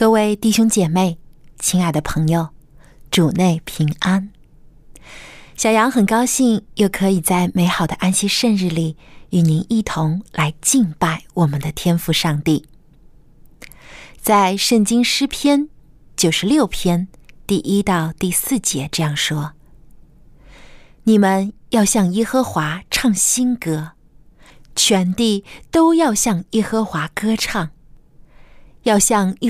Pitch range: 160-230 Hz